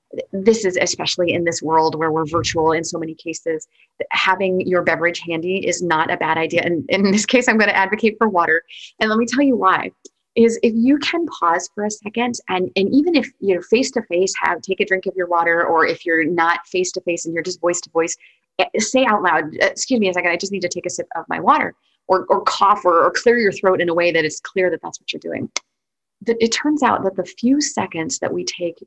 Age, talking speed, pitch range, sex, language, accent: 30-49, 240 wpm, 170-225 Hz, female, English, American